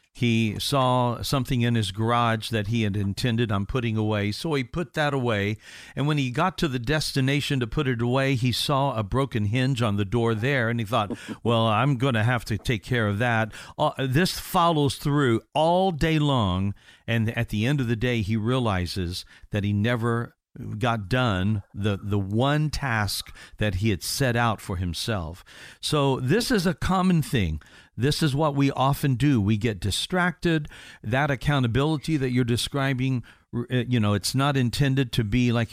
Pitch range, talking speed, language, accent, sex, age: 105-140 Hz, 185 wpm, English, American, male, 50-69